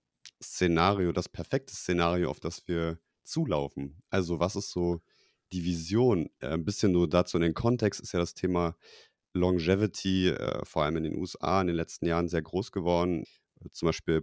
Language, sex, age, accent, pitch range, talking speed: English, male, 30-49, German, 85-105 Hz, 170 wpm